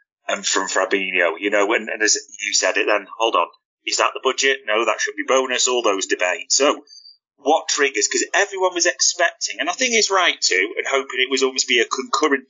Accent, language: British, English